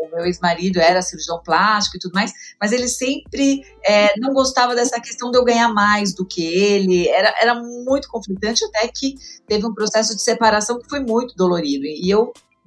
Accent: Brazilian